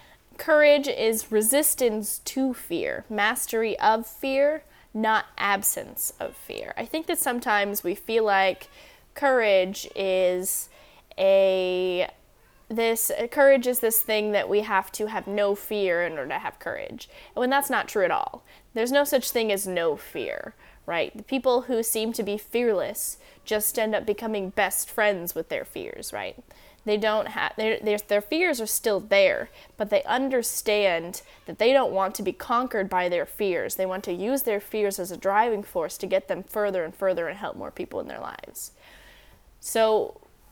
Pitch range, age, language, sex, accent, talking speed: 195-250 Hz, 10-29, English, female, American, 170 wpm